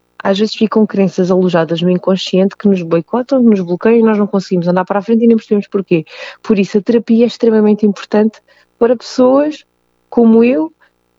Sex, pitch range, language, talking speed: female, 160-210 Hz, Portuguese, 190 wpm